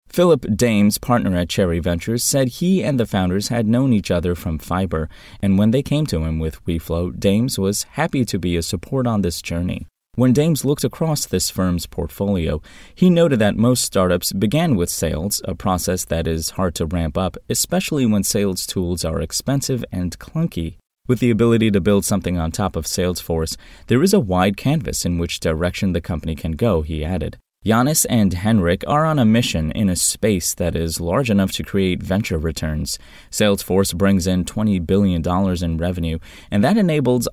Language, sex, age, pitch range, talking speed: English, male, 20-39, 85-115 Hz, 190 wpm